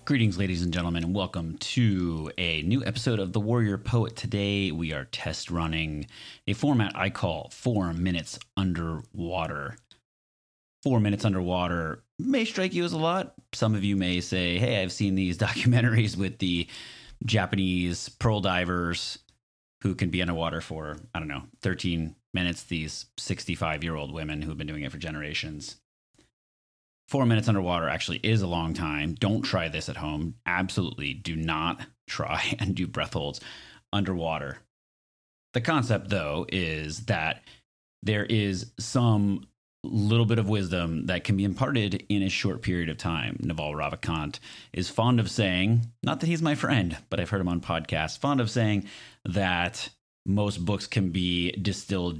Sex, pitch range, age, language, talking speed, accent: male, 85-110 Hz, 30-49, English, 160 wpm, American